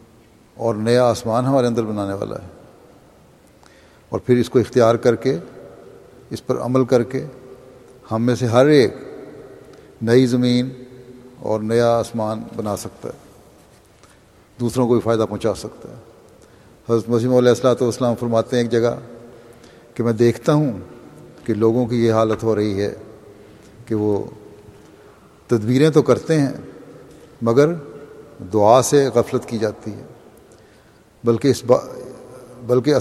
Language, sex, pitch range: Urdu, male, 115-130 Hz